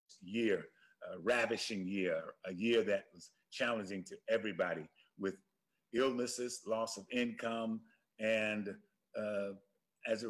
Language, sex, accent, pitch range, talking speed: English, male, American, 100-115 Hz, 115 wpm